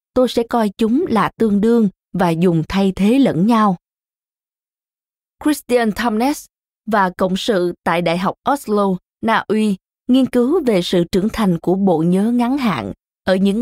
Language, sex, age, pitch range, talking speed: Vietnamese, female, 20-39, 185-245 Hz, 165 wpm